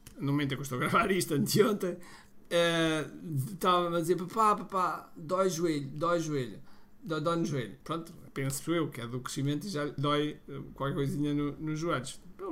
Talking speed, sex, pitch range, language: 200 wpm, male, 150-180 Hz, Portuguese